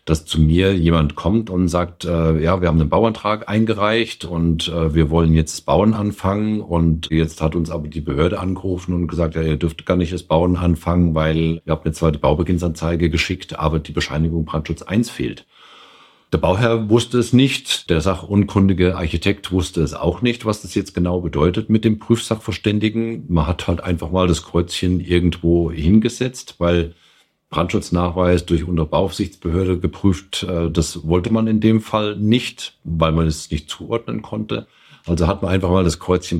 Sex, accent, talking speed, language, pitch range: male, German, 180 wpm, German, 80-100 Hz